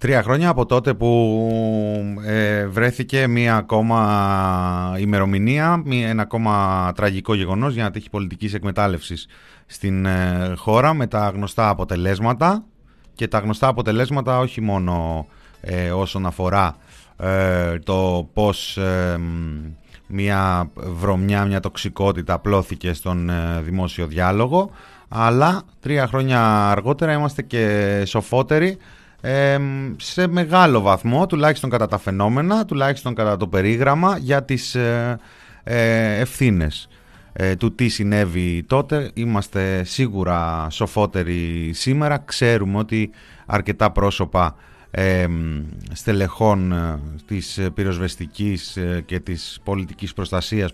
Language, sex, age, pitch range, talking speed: Greek, male, 30-49, 95-125 Hz, 105 wpm